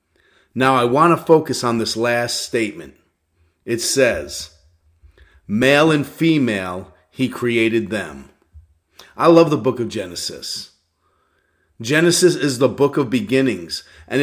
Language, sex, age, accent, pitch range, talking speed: English, male, 40-59, American, 115-150 Hz, 125 wpm